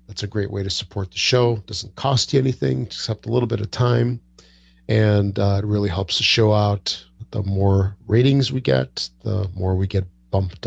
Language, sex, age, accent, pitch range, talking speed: English, male, 40-59, American, 95-115 Hz, 210 wpm